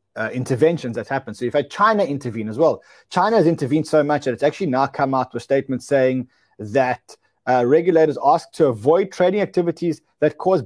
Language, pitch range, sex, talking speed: English, 125-170 Hz, male, 195 wpm